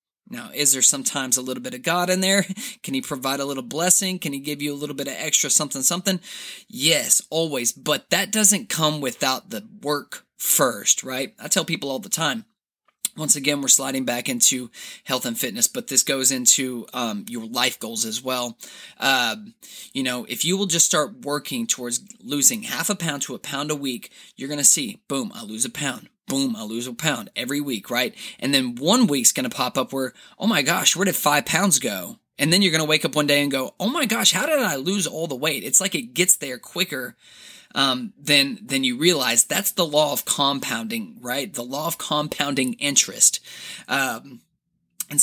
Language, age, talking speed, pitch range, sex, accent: English, 20-39, 215 wpm, 140-205 Hz, male, American